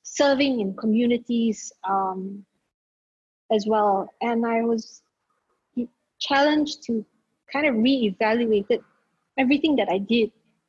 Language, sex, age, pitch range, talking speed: English, female, 20-39, 210-260 Hz, 105 wpm